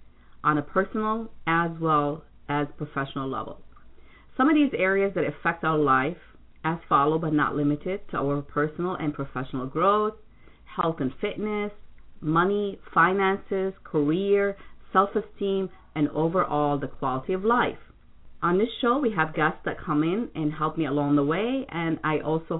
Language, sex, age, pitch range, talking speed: English, female, 40-59, 150-205 Hz, 155 wpm